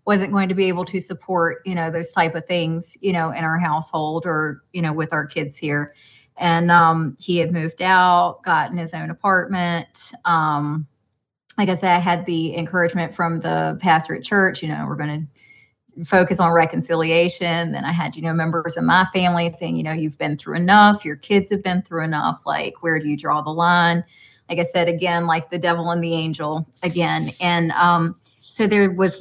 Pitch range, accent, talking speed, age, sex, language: 160-185 Hz, American, 210 wpm, 30-49, female, English